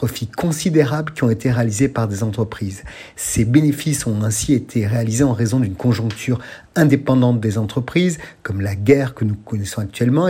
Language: French